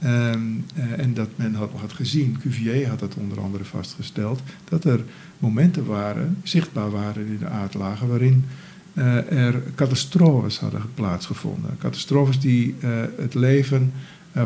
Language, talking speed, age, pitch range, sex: Dutch, 135 wpm, 50-69, 115-155 Hz, male